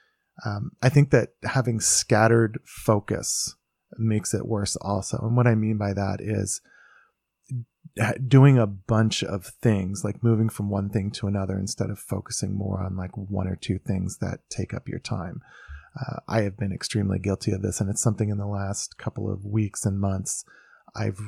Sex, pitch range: male, 100-125 Hz